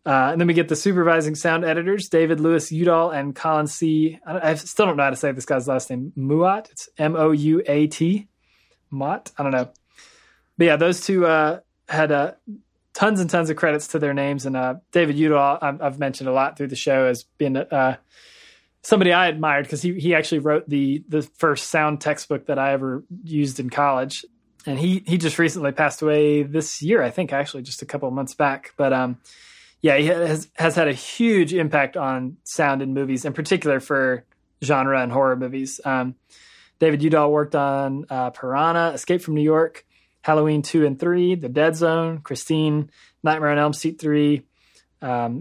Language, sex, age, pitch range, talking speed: English, male, 20-39, 135-165 Hz, 195 wpm